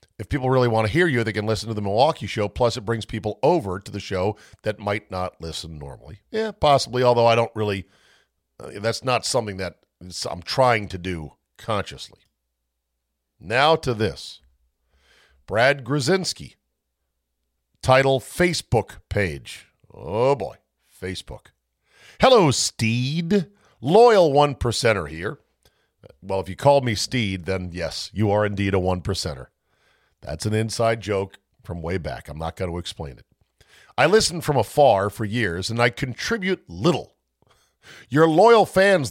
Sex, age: male, 50-69